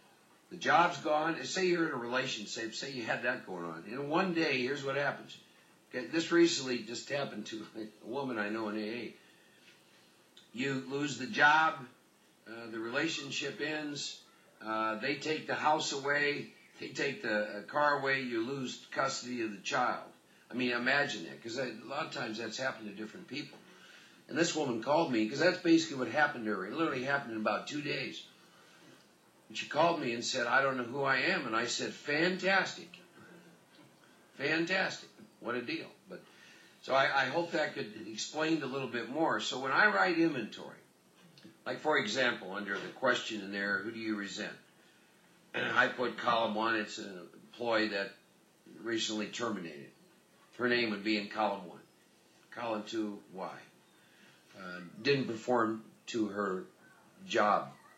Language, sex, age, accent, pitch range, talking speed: English, male, 60-79, American, 110-145 Hz, 170 wpm